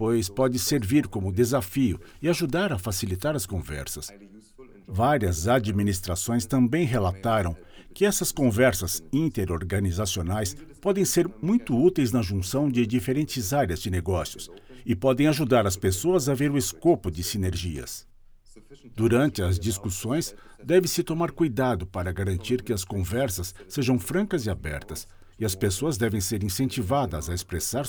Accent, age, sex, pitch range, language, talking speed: Brazilian, 60-79, male, 95-135 Hz, English, 140 wpm